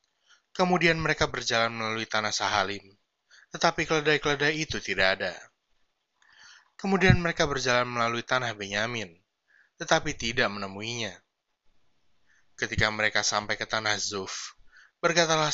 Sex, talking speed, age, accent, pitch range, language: male, 105 wpm, 20-39, native, 105-145 Hz, Indonesian